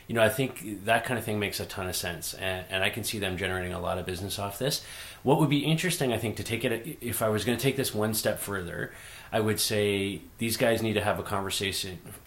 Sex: male